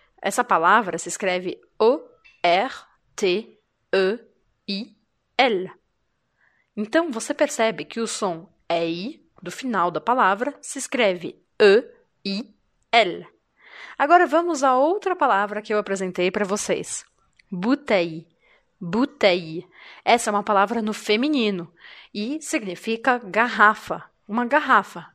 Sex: female